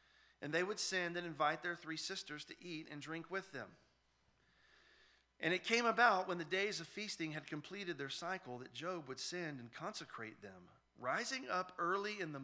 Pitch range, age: 135-185 Hz, 40-59